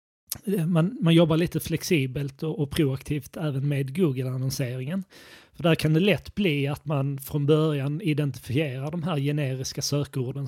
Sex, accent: male, native